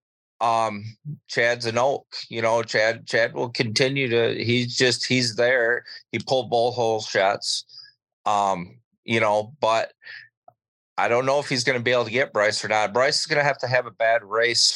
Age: 30-49